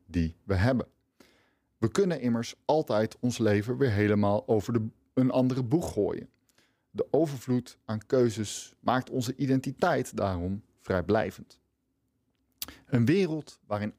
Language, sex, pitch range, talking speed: Dutch, male, 105-130 Hz, 120 wpm